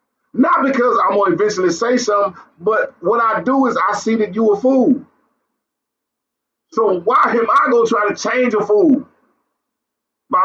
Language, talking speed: English, 165 wpm